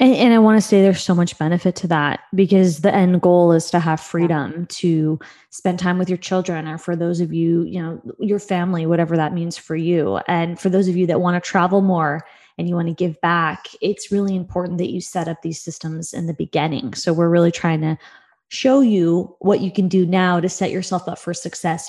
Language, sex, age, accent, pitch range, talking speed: English, female, 20-39, American, 165-195 Hz, 235 wpm